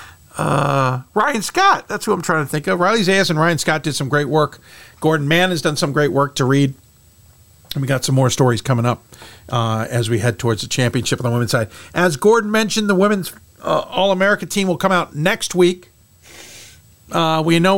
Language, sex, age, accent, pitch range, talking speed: English, male, 50-69, American, 120-170 Hz, 215 wpm